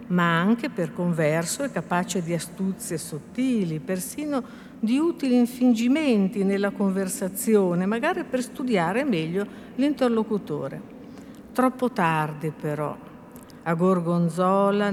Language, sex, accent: Italian, female, native